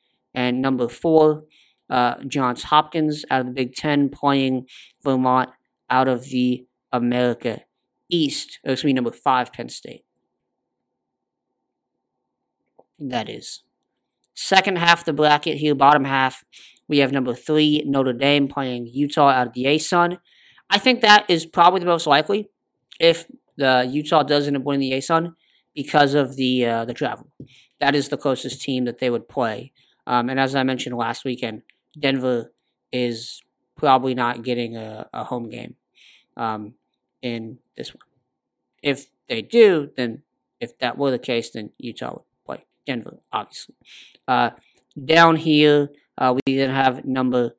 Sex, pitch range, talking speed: male, 125-150 Hz, 150 wpm